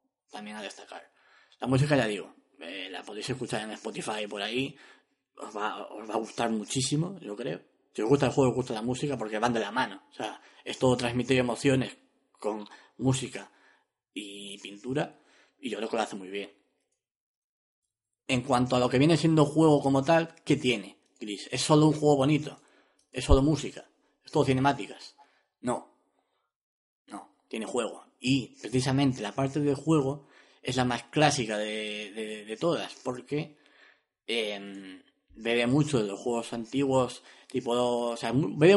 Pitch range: 115-140 Hz